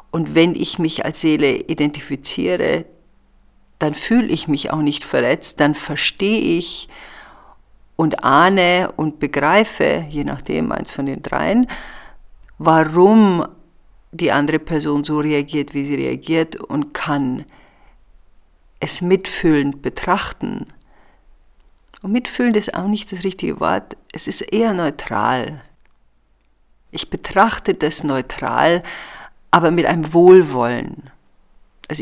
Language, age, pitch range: German, 50-69, 140-185 Hz